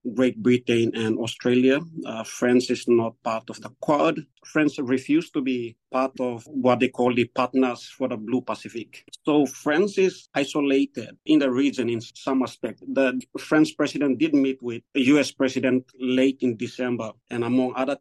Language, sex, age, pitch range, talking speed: English, male, 50-69, 125-135 Hz, 175 wpm